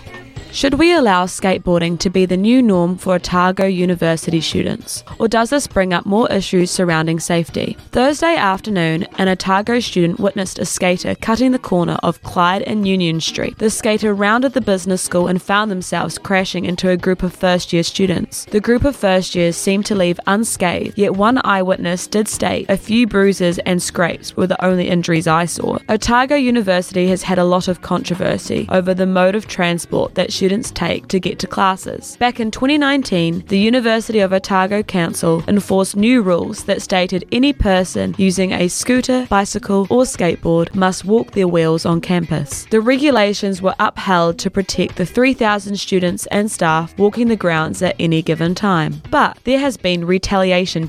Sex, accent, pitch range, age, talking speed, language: female, Australian, 180-215 Hz, 20-39, 175 wpm, English